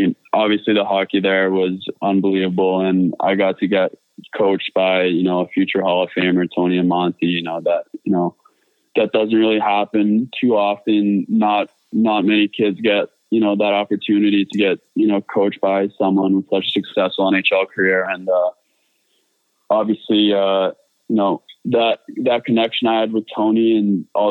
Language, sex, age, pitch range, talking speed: English, male, 20-39, 95-105 Hz, 180 wpm